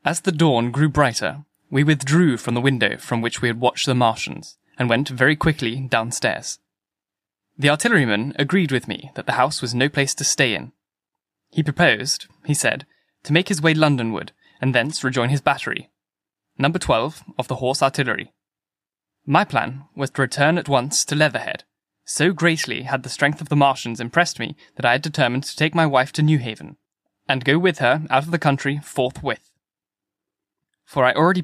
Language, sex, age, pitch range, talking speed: English, male, 10-29, 125-155 Hz, 185 wpm